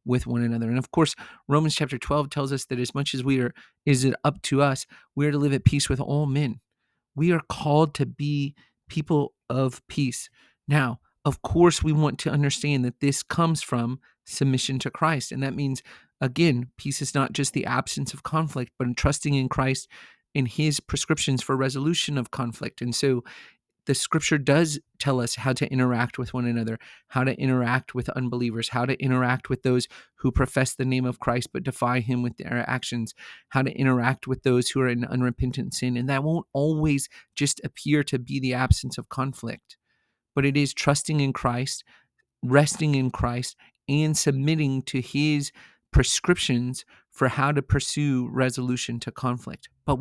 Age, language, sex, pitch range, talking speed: 30-49, English, male, 125-145 Hz, 185 wpm